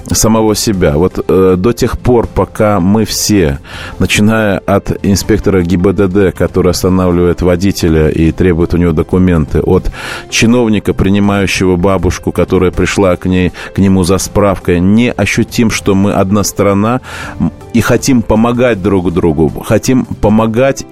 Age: 30-49